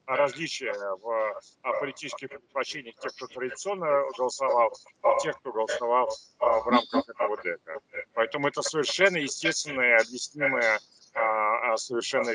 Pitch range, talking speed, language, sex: 135-215 Hz, 105 wpm, Russian, male